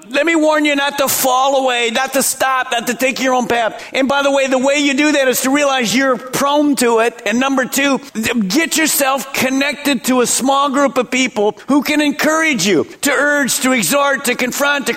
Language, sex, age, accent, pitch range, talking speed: English, male, 50-69, American, 220-280 Hz, 225 wpm